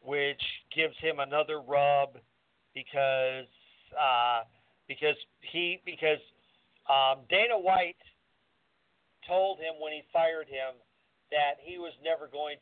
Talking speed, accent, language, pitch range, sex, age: 115 wpm, American, English, 135-165 Hz, male, 50-69